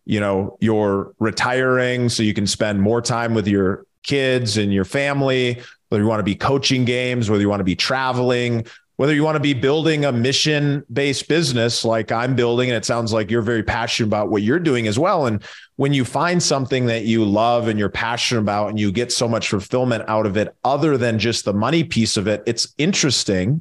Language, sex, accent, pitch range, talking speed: English, male, American, 110-130 Hz, 220 wpm